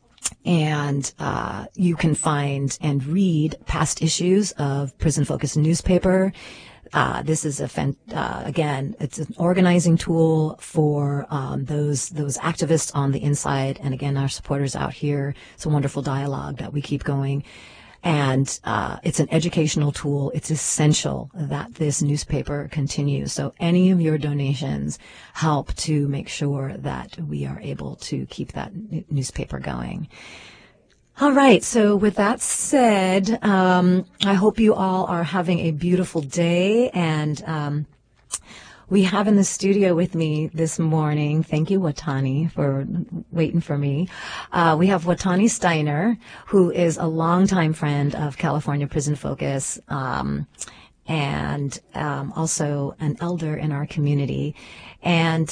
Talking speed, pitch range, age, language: 145 wpm, 145-180 Hz, 40-59, English